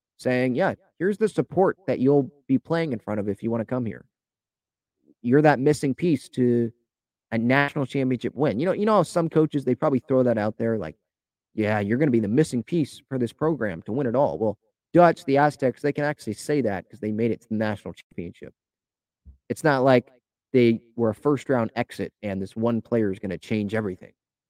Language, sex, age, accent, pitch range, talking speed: English, male, 30-49, American, 110-140 Hz, 225 wpm